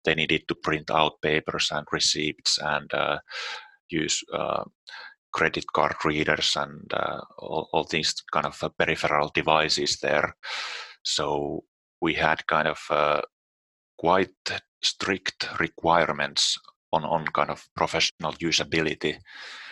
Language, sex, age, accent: English, male, 30-49, Finnish